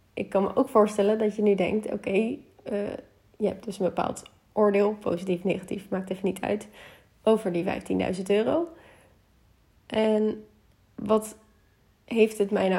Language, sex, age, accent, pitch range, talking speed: Dutch, female, 20-39, Dutch, 185-220 Hz, 160 wpm